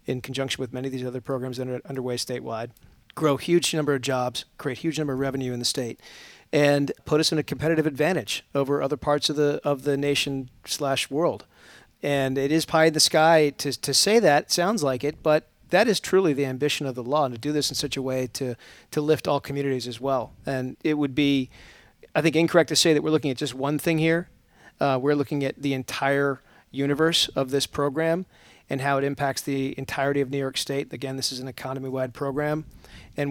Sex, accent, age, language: male, American, 40-59, English